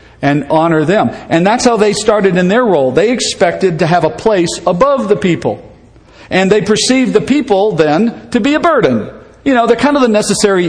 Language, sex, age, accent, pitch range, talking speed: English, male, 50-69, American, 170-230 Hz, 210 wpm